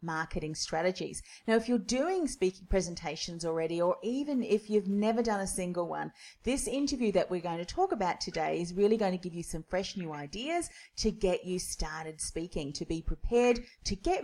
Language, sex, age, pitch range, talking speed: English, female, 40-59, 165-215 Hz, 200 wpm